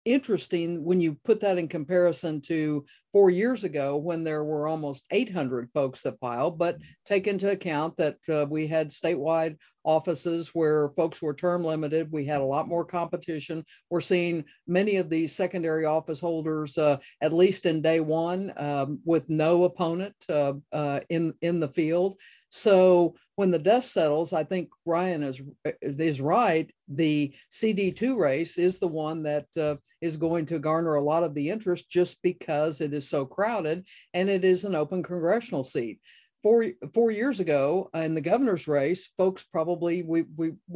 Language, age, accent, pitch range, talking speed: English, 60-79, American, 155-185 Hz, 170 wpm